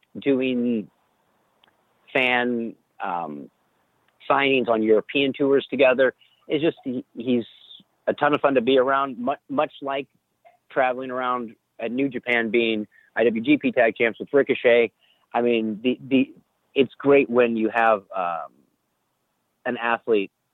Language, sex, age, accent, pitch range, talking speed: English, male, 40-59, American, 110-135 Hz, 130 wpm